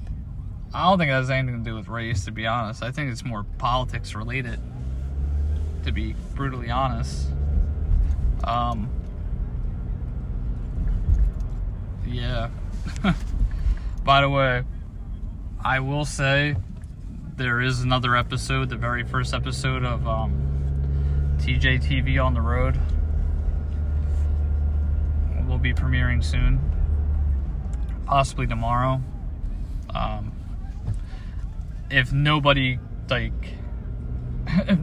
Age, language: 20-39, English